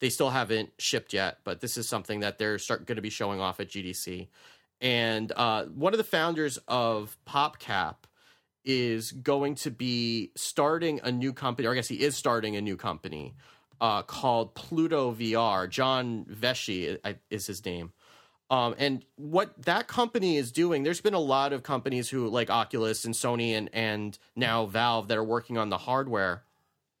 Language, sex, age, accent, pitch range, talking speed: English, male, 30-49, American, 110-140 Hz, 180 wpm